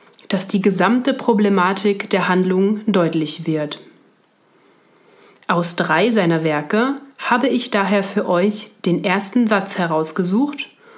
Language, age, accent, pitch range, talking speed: German, 30-49, German, 175-220 Hz, 115 wpm